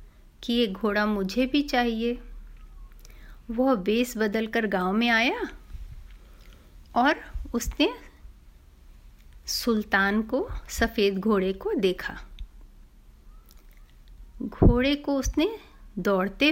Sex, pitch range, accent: female, 200-245 Hz, native